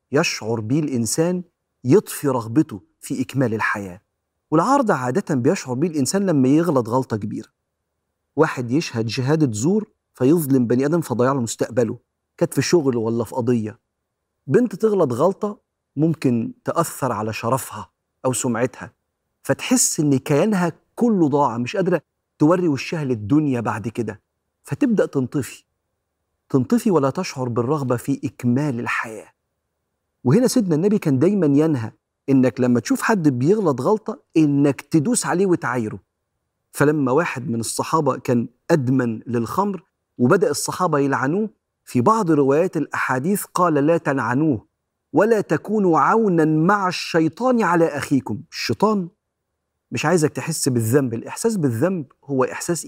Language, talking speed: Arabic, 125 wpm